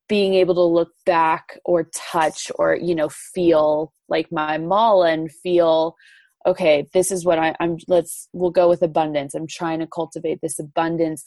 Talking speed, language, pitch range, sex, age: 170 wpm, English, 160-175 Hz, female, 20-39